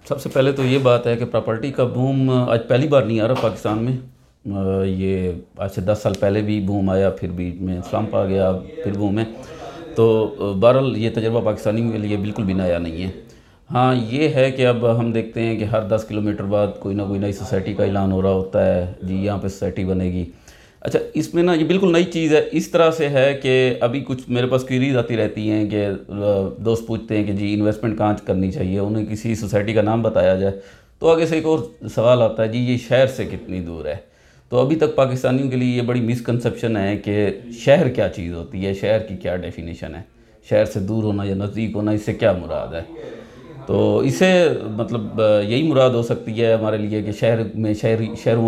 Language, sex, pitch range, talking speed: Urdu, male, 100-125 Hz, 230 wpm